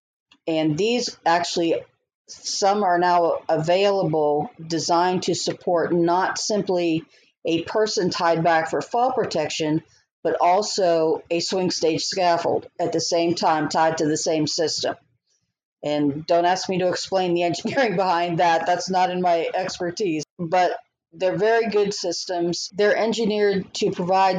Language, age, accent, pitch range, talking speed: English, 50-69, American, 165-195 Hz, 145 wpm